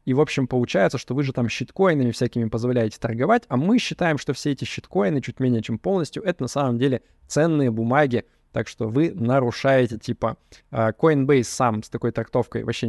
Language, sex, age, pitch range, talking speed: Russian, male, 20-39, 115-140 Hz, 185 wpm